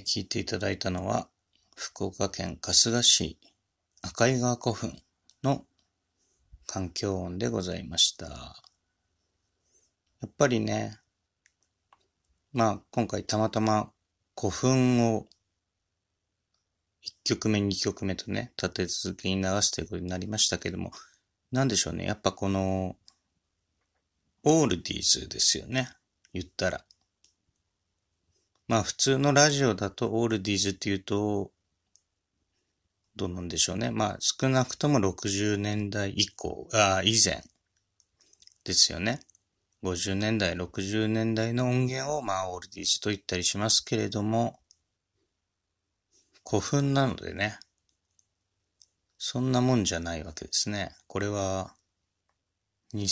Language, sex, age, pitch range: Japanese, male, 30-49, 90-110 Hz